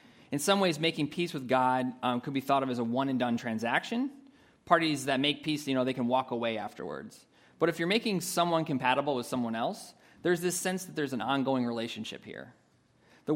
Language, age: English, 30-49